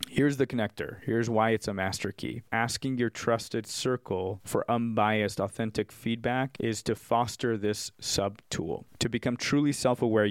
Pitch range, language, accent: 105-120 Hz, English, American